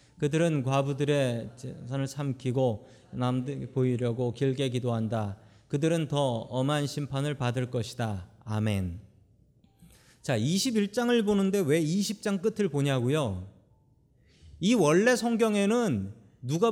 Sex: male